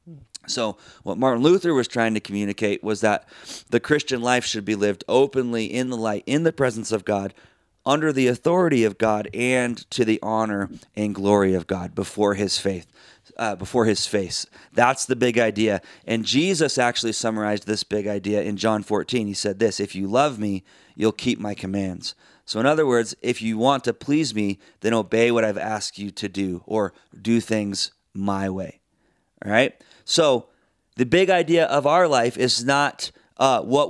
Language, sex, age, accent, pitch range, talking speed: English, male, 30-49, American, 100-120 Hz, 190 wpm